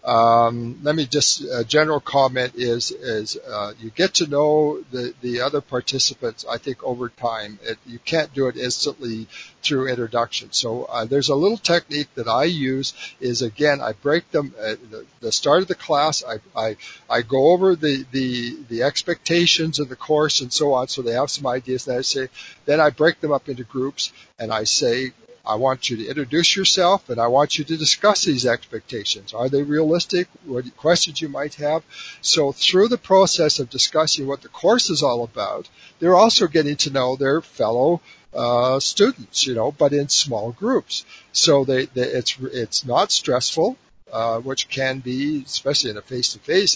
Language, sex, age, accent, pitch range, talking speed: English, male, 60-79, American, 125-155 Hz, 190 wpm